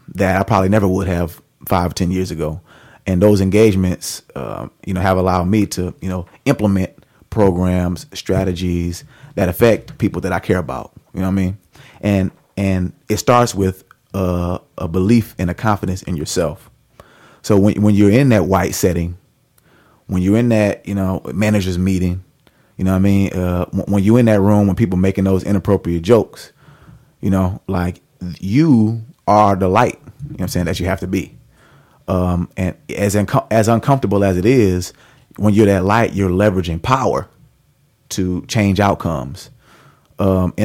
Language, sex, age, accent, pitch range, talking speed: English, male, 30-49, American, 95-110 Hz, 180 wpm